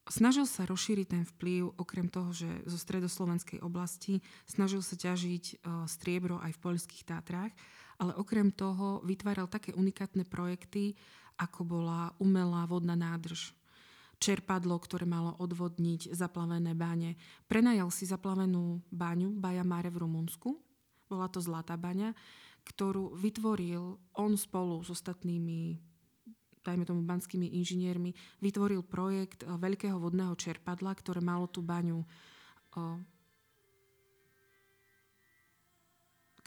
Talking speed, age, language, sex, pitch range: 115 wpm, 20-39, Slovak, female, 170-195 Hz